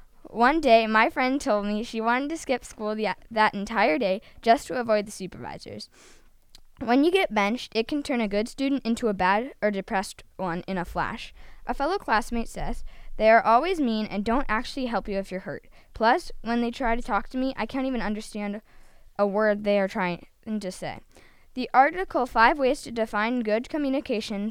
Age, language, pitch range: 10-29, English, 205-255 Hz